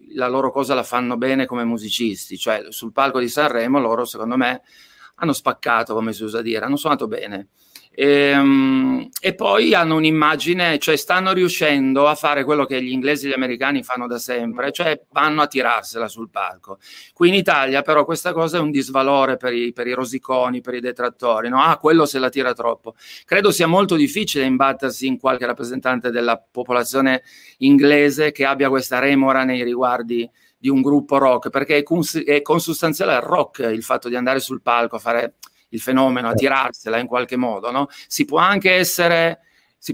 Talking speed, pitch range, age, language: 180 wpm, 125-155 Hz, 40-59, Italian